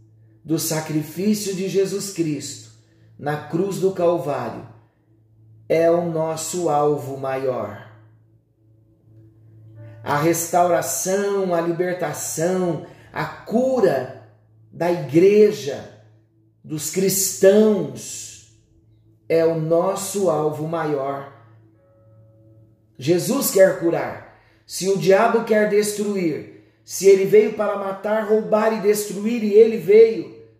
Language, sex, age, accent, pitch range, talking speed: Portuguese, male, 40-59, Brazilian, 110-180 Hz, 95 wpm